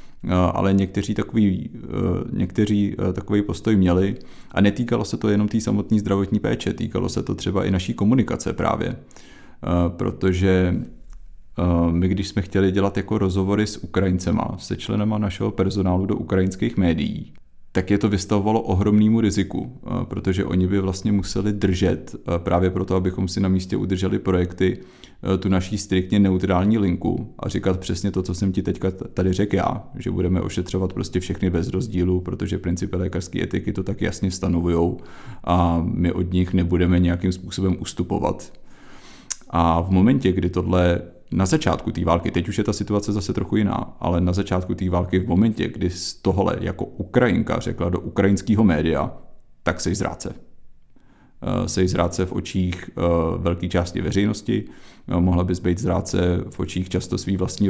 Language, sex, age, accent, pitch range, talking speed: Czech, male, 30-49, native, 90-100 Hz, 160 wpm